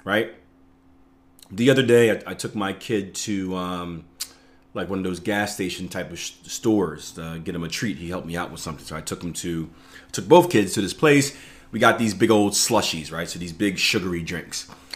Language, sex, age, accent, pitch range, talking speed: English, male, 30-49, American, 90-135 Hz, 225 wpm